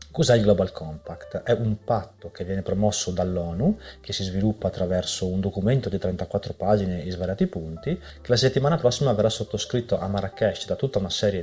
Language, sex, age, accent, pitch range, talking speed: Italian, male, 30-49, native, 95-120 Hz, 185 wpm